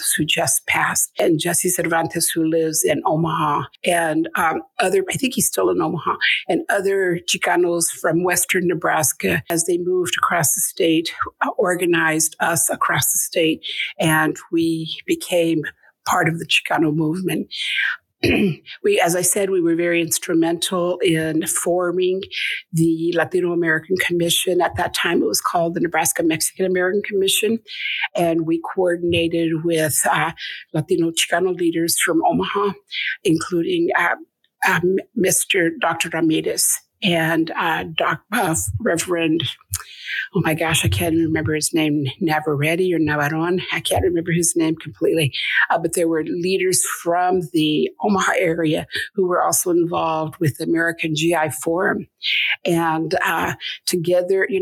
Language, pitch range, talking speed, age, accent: English, 165-185 Hz, 140 wpm, 50-69, American